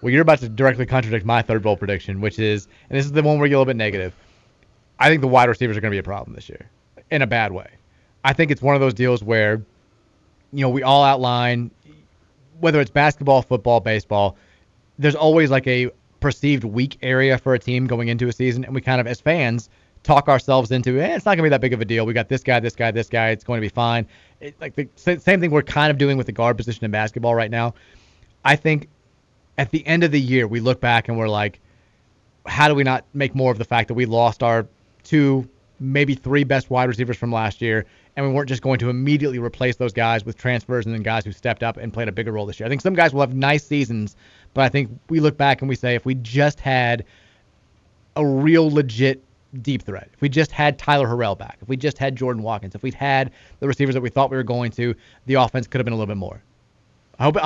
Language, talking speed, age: English, 255 wpm, 30-49